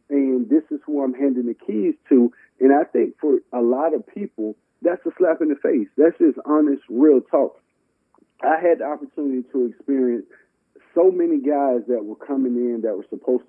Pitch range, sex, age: 120-150 Hz, male, 40-59